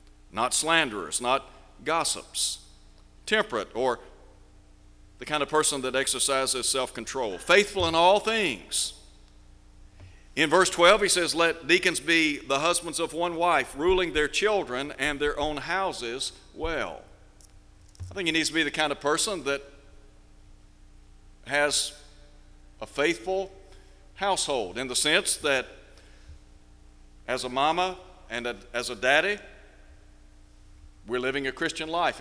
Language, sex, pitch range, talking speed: English, male, 100-160 Hz, 130 wpm